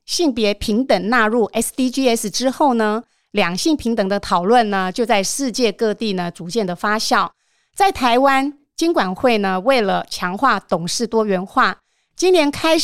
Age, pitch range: 30-49, 200-275 Hz